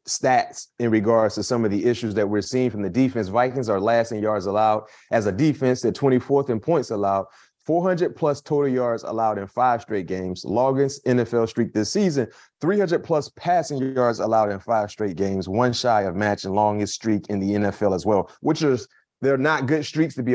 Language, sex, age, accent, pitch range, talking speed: English, male, 30-49, American, 105-135 Hz, 205 wpm